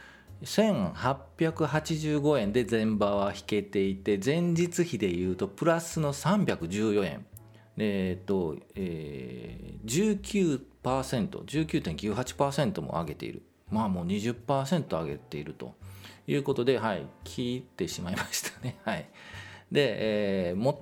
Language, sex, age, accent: Japanese, male, 40-59, native